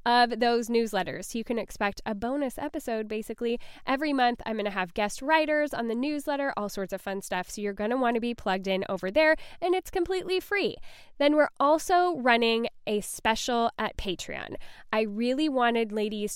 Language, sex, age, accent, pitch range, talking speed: English, female, 10-29, American, 210-275 Hz, 195 wpm